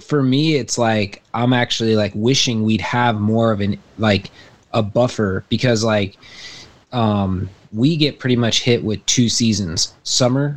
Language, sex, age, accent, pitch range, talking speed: English, male, 20-39, American, 105-130 Hz, 160 wpm